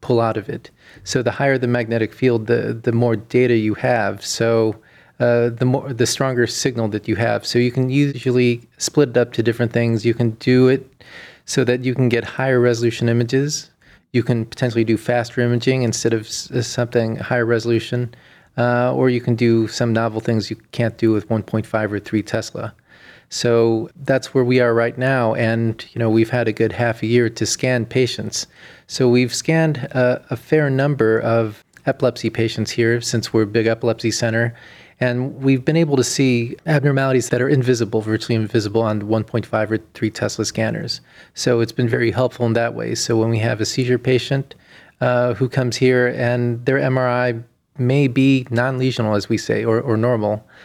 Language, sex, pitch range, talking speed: English, male, 115-130 Hz, 190 wpm